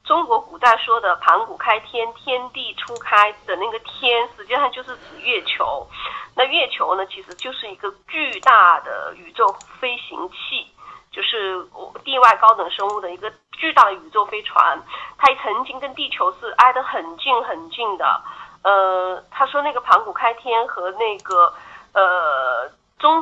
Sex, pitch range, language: female, 200-275 Hz, Chinese